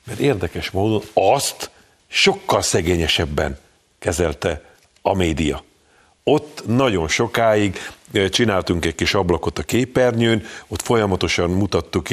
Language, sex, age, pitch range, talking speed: Hungarian, male, 50-69, 90-105 Hz, 105 wpm